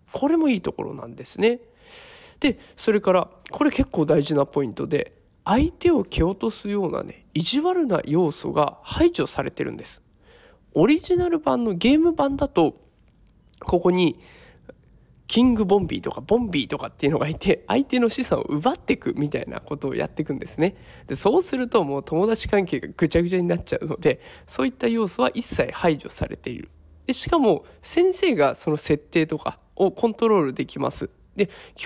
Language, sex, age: Japanese, male, 20-39